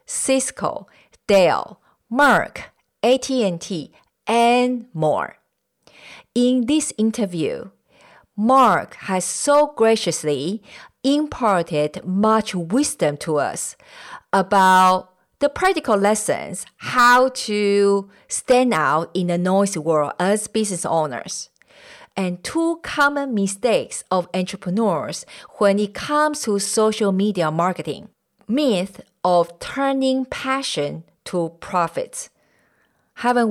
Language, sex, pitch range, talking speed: English, female, 170-235 Hz, 95 wpm